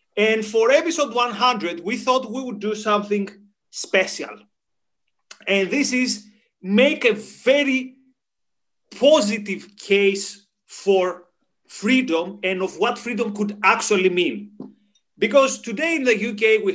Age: 30-49